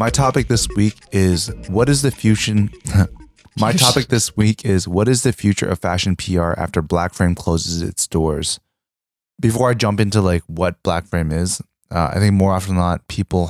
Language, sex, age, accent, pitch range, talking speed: English, male, 20-39, American, 85-105 Hz, 185 wpm